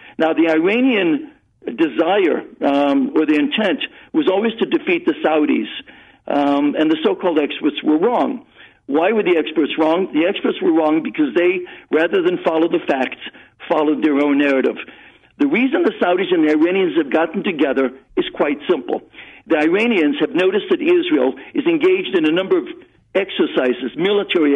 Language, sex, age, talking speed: English, male, 60-79, 165 wpm